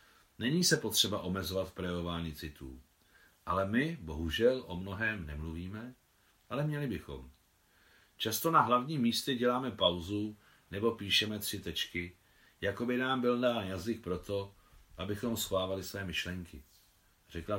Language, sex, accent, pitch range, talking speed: Czech, male, native, 85-115 Hz, 130 wpm